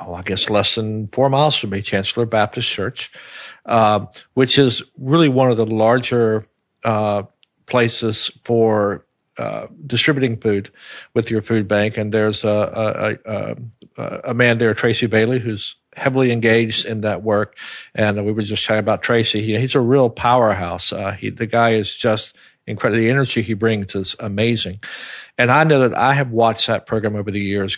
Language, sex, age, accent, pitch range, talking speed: English, male, 50-69, American, 110-125 Hz, 180 wpm